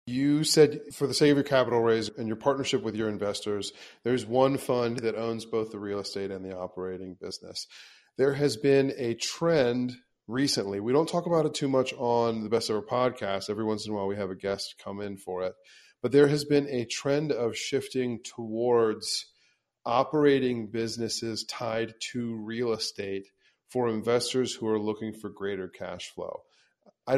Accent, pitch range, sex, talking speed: American, 110-130 Hz, male, 185 wpm